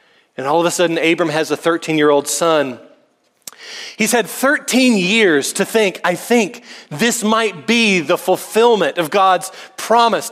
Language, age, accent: English, 40-59, American